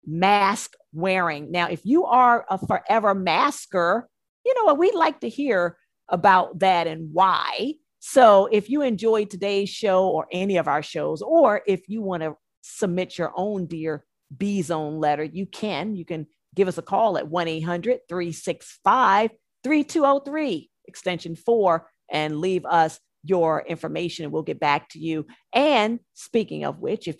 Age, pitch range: 50-69, 160-215 Hz